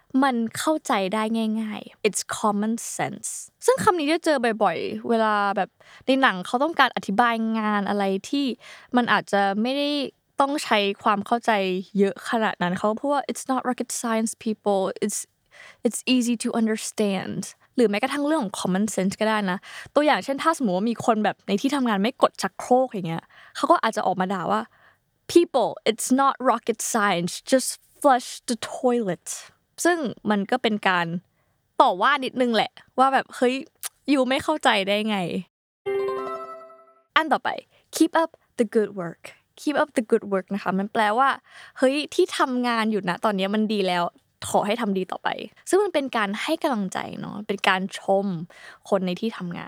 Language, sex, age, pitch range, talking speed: English, female, 20-39, 200-265 Hz, 50 wpm